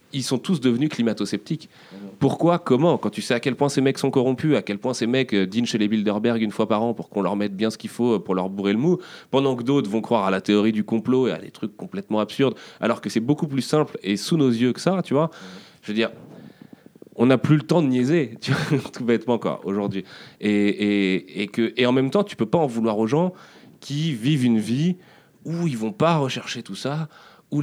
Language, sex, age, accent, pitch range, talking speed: French, male, 30-49, French, 105-140 Hz, 250 wpm